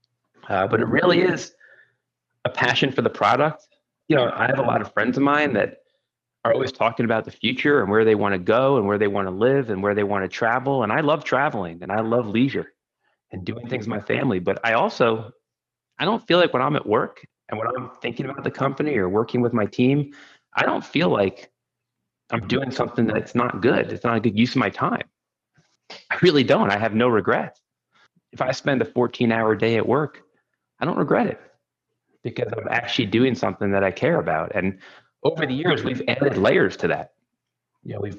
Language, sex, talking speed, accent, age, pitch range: English, male, 220 wpm, American, 30-49, 100-125 Hz